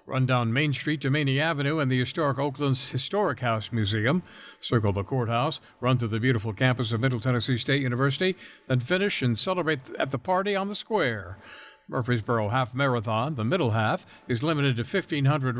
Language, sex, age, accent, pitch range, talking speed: English, male, 60-79, American, 120-160 Hz, 185 wpm